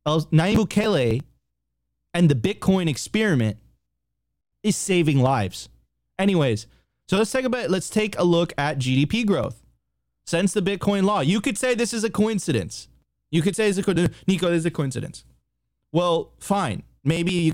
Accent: American